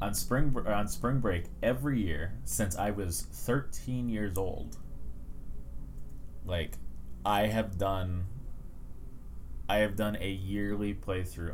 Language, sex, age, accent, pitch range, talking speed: English, male, 20-39, American, 85-105 Hz, 120 wpm